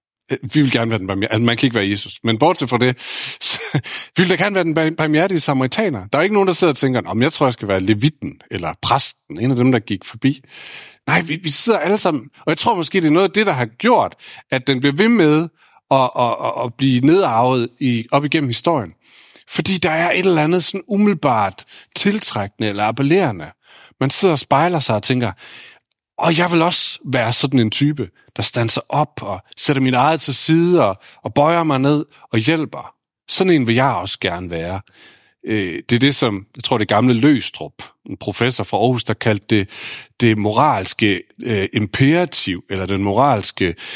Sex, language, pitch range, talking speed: male, Danish, 110-155 Hz, 210 wpm